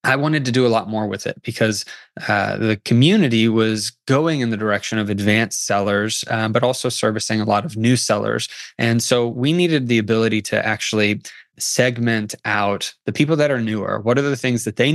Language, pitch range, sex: English, 110-125 Hz, male